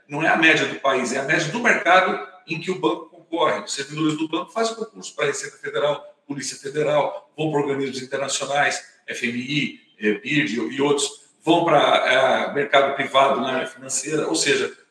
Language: Portuguese